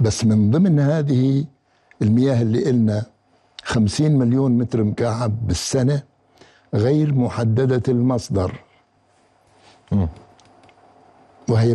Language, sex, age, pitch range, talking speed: Arabic, male, 60-79, 105-130 Hz, 80 wpm